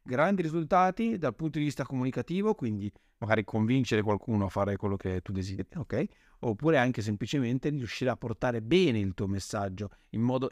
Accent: native